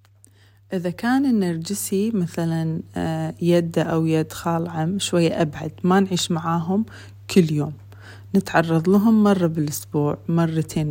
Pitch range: 150-205 Hz